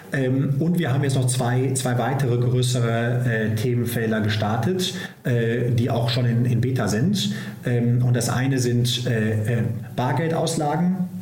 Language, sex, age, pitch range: German, male, 40-59, 120-130 Hz